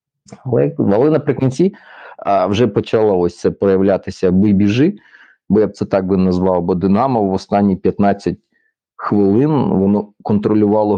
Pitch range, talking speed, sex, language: 90-105 Hz, 130 wpm, male, Ukrainian